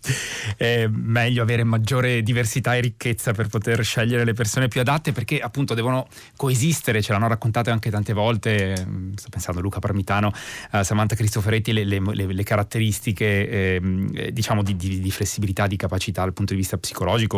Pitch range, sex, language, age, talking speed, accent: 100-130 Hz, male, Italian, 30-49, 175 wpm, native